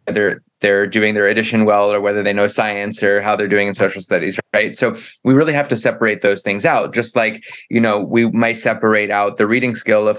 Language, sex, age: English, male, 20-39